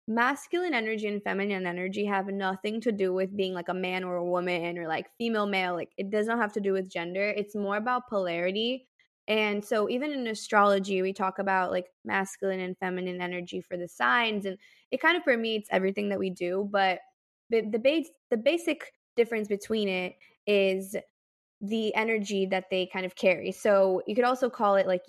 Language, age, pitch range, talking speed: English, 20-39, 195-225 Hz, 195 wpm